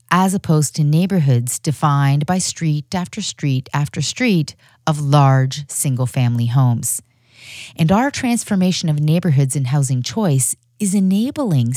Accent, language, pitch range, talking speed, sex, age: American, English, 130-185 Hz, 125 wpm, female, 40-59